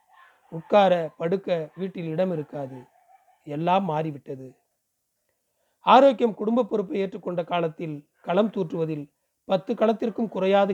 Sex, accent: male, native